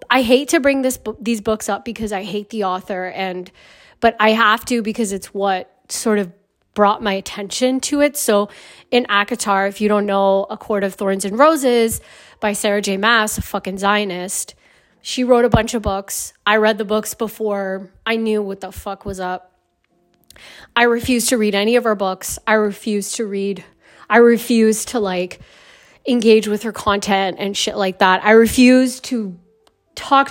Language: English